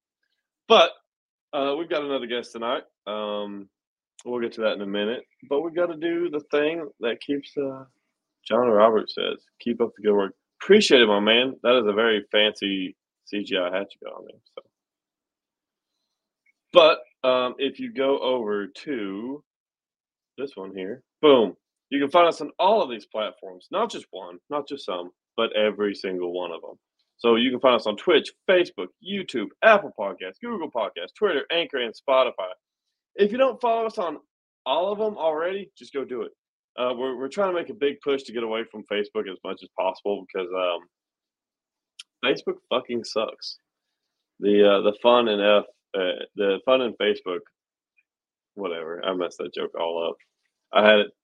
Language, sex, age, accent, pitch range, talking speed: English, male, 20-39, American, 105-170 Hz, 180 wpm